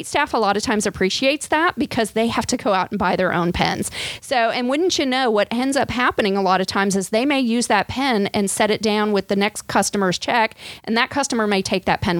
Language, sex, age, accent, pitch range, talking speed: English, female, 40-59, American, 195-240 Hz, 260 wpm